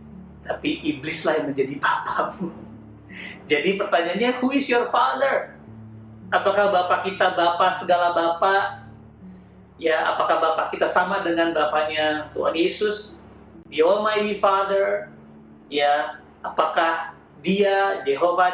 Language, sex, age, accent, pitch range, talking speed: Indonesian, male, 40-59, native, 135-195 Hz, 105 wpm